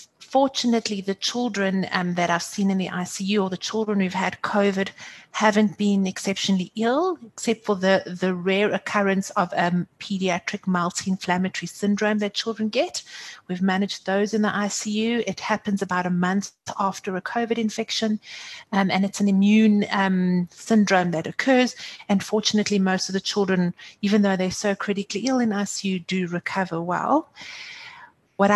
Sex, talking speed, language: female, 160 wpm, English